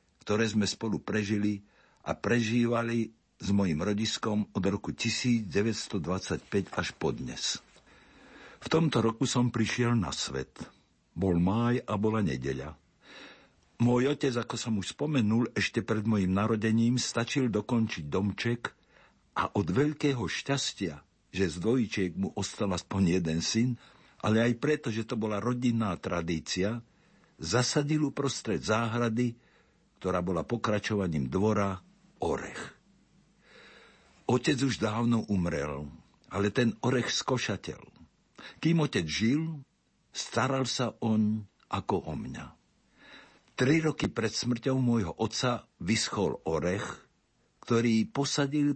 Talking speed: 115 wpm